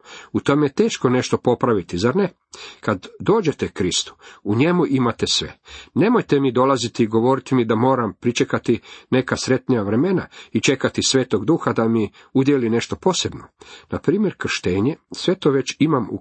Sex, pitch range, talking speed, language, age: male, 115-145 Hz, 160 wpm, Croatian, 50-69